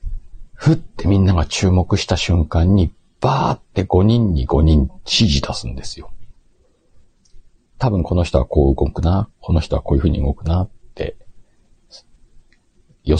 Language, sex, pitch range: Japanese, male, 75-105 Hz